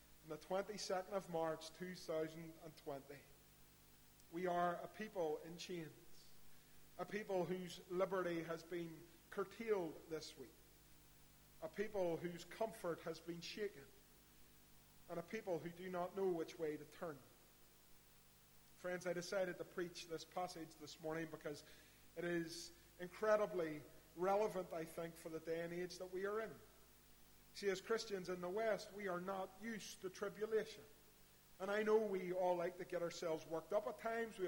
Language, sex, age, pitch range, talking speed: English, male, 40-59, 165-210 Hz, 155 wpm